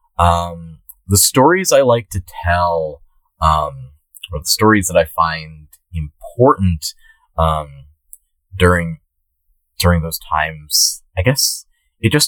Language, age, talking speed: English, 30-49, 115 wpm